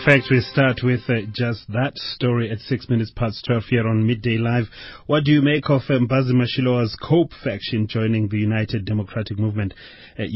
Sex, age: male, 30-49